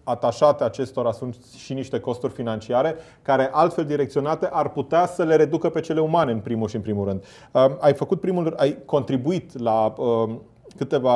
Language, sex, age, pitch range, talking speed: Romanian, male, 30-49, 115-135 Hz, 170 wpm